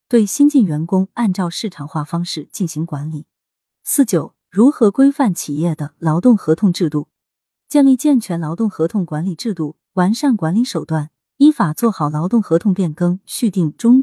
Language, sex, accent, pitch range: Chinese, female, native, 160-230 Hz